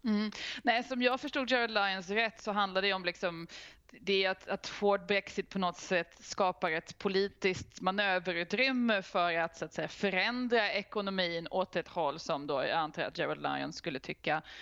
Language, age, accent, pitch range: Swedish, 20-39, native, 170-200 Hz